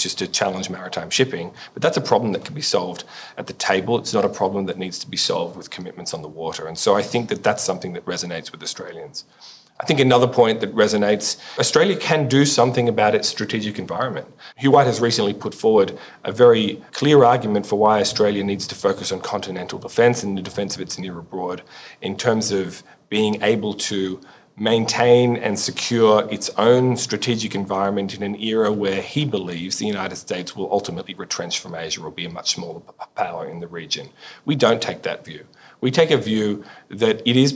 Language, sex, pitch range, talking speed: English, male, 100-120 Hz, 205 wpm